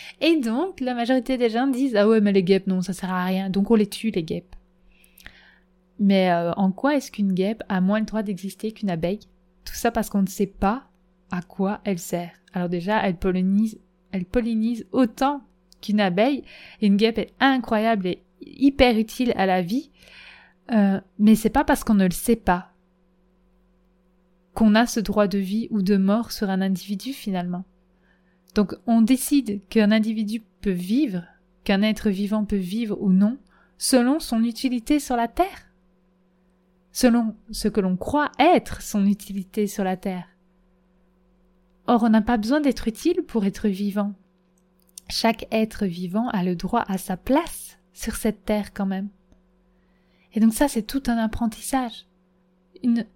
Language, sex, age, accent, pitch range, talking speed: French, female, 20-39, French, 180-230 Hz, 175 wpm